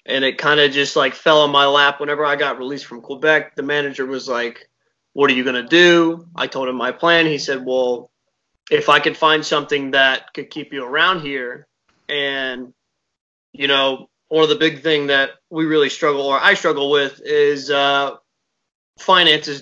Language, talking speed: English, 195 wpm